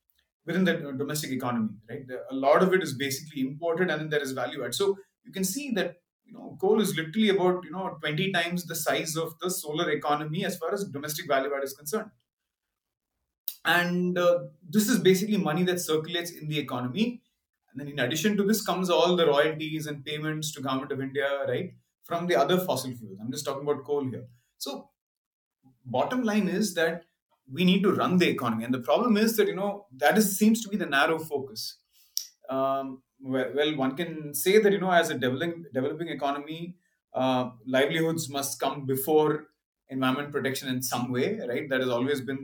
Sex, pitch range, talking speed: male, 135-185 Hz, 200 wpm